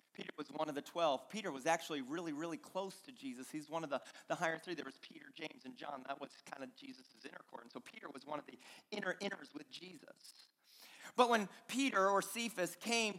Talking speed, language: 230 wpm, English